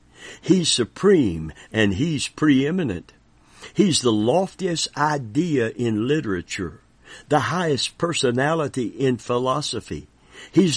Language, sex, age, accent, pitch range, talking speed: English, male, 60-79, American, 105-160 Hz, 95 wpm